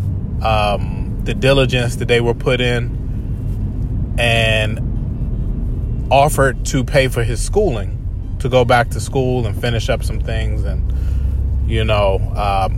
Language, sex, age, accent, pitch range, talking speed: English, male, 20-39, American, 100-125 Hz, 135 wpm